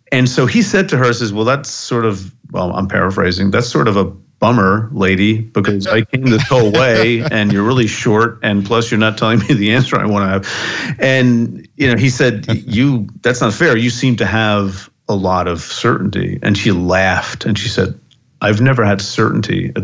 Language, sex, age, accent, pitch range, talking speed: English, male, 40-59, American, 100-125 Hz, 215 wpm